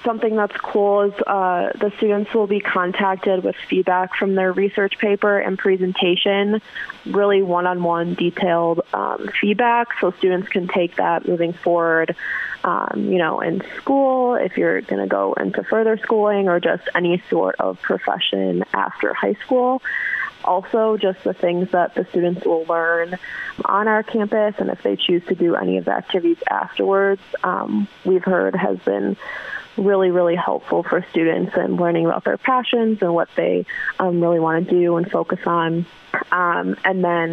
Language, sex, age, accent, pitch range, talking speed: English, female, 20-39, American, 170-210 Hz, 165 wpm